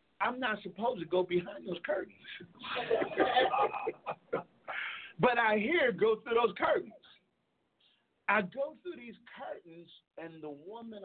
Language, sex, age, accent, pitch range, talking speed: English, male, 50-69, American, 160-215 Hz, 125 wpm